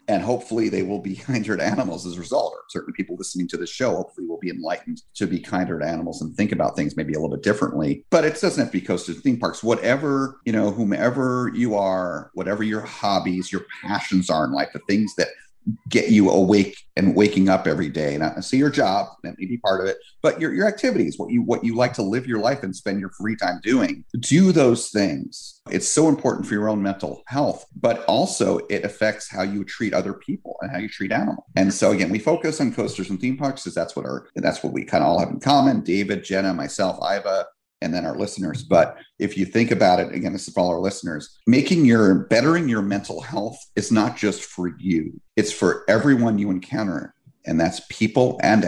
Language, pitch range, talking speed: English, 95-125 Hz, 235 wpm